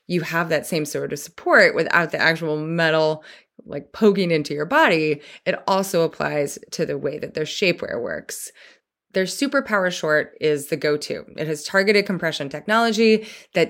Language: English